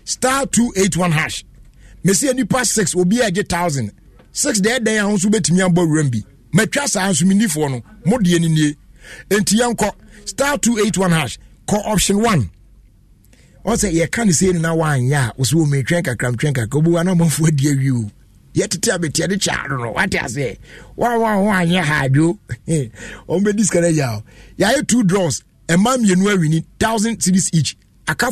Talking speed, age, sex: 165 wpm, 60-79, male